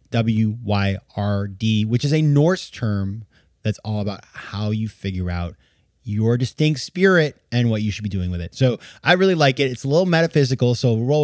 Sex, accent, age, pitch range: male, American, 30-49, 100-145 Hz